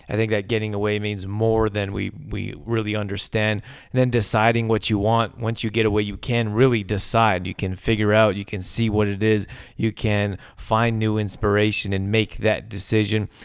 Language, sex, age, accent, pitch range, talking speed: English, male, 30-49, American, 105-120 Hz, 200 wpm